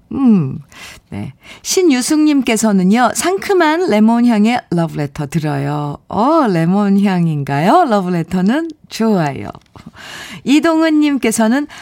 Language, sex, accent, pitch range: Korean, female, native, 170-260 Hz